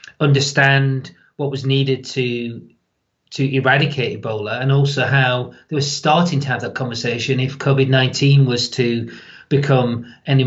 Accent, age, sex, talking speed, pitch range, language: British, 40-59, male, 140 wpm, 130-150 Hz, English